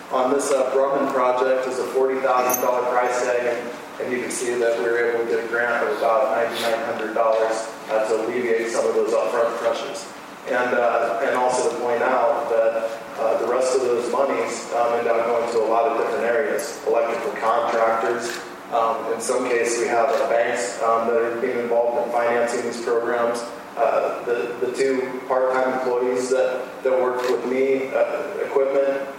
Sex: male